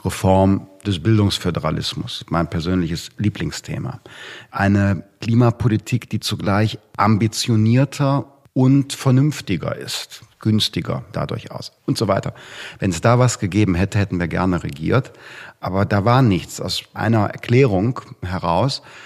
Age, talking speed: 50-69, 120 wpm